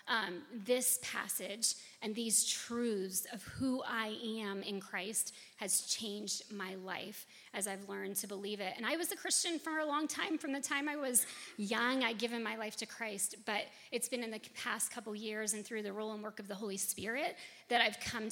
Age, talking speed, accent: 30-49, 210 wpm, American